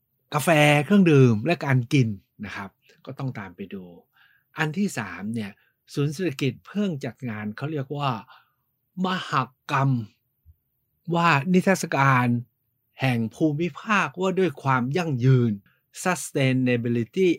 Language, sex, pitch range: Thai, male, 115-155 Hz